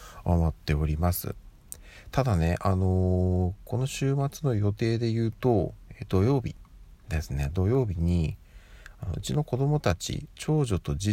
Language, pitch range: Japanese, 80-110 Hz